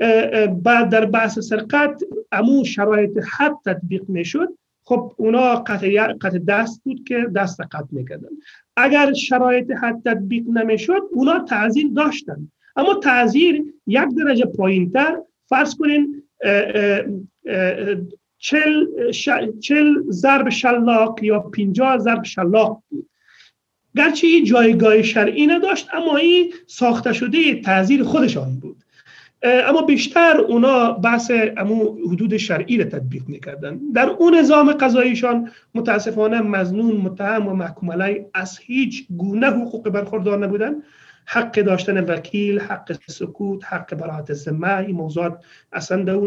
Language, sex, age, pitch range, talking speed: Persian, male, 40-59, 190-265 Hz, 120 wpm